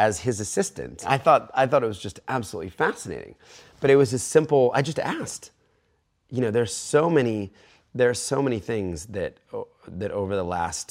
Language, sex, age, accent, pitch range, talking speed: English, male, 30-49, American, 80-110 Hz, 195 wpm